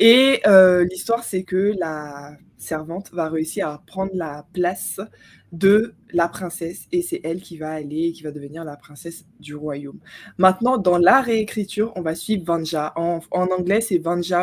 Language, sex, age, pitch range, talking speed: French, female, 20-39, 160-195 Hz, 180 wpm